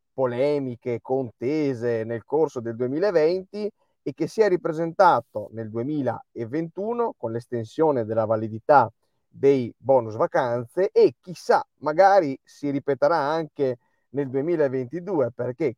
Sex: male